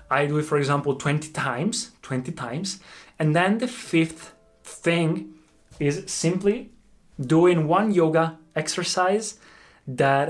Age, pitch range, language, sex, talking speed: 20-39, 130-155 Hz, Italian, male, 120 wpm